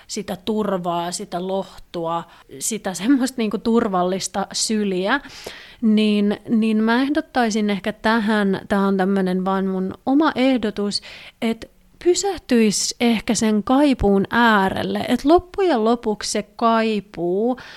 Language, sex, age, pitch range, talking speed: Finnish, female, 30-49, 205-260 Hz, 110 wpm